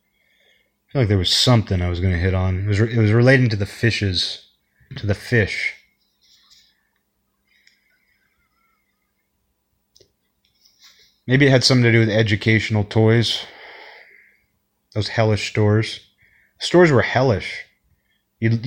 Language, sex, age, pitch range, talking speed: English, male, 30-49, 110-135 Hz, 120 wpm